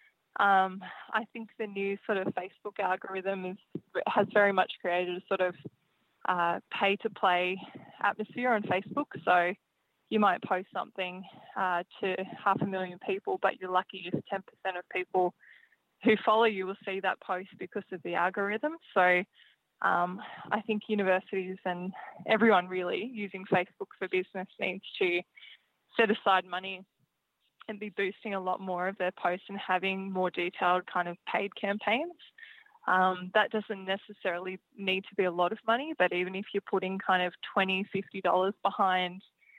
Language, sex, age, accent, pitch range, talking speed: English, female, 20-39, Australian, 185-210 Hz, 160 wpm